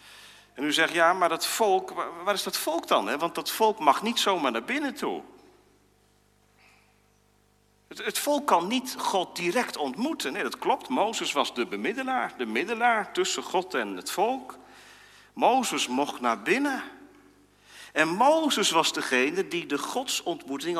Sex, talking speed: male, 155 wpm